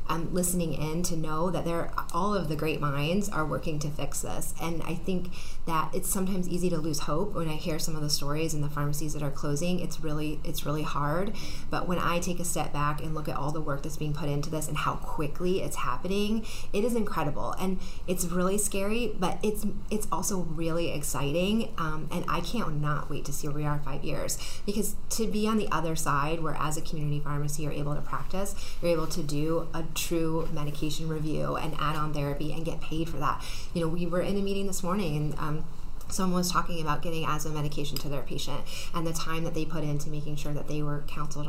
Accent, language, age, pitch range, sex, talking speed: American, English, 30-49, 150-175 Hz, female, 230 wpm